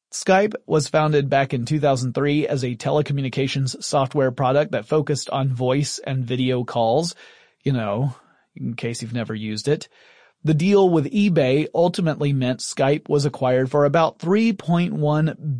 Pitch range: 130-170 Hz